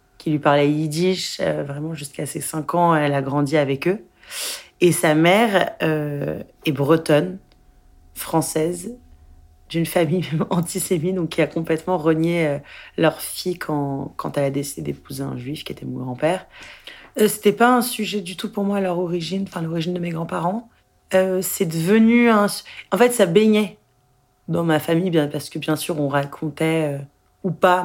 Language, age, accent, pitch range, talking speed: French, 30-49, French, 150-185 Hz, 170 wpm